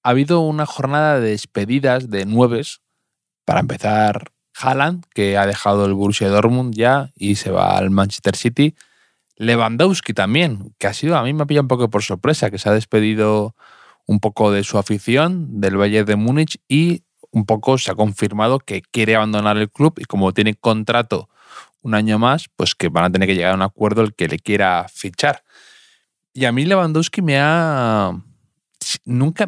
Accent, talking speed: Spanish, 185 wpm